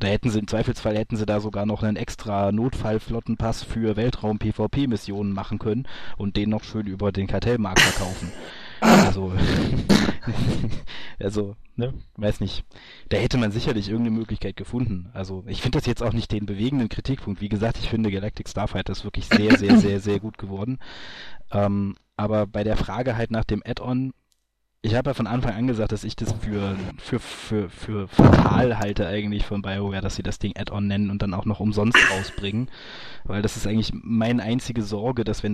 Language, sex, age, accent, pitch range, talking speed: German, male, 20-39, German, 100-115 Hz, 185 wpm